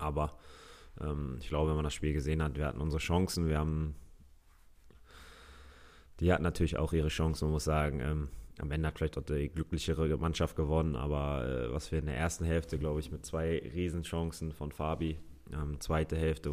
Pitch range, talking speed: 75-80 Hz, 190 wpm